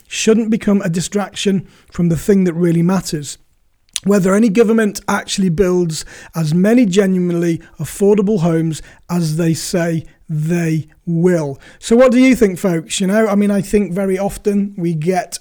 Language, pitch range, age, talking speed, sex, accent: English, 175-215 Hz, 30-49, 160 wpm, male, British